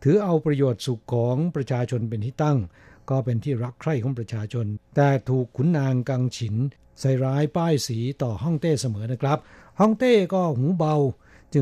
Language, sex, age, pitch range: Thai, male, 60-79, 125-155 Hz